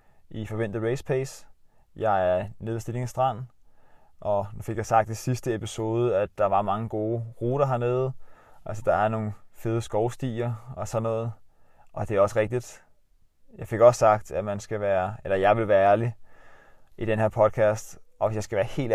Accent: native